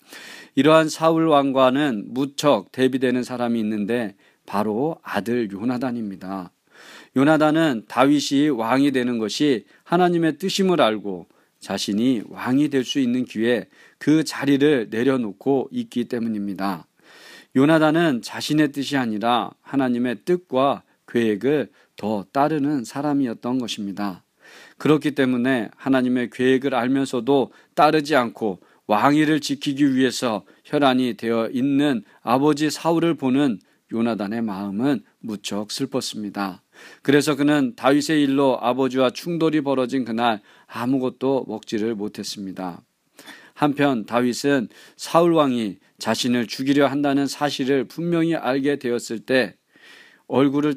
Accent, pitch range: native, 115-145 Hz